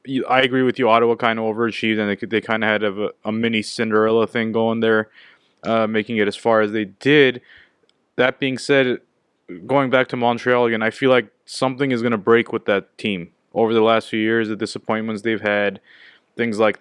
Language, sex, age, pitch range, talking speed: English, male, 20-39, 110-120 Hz, 205 wpm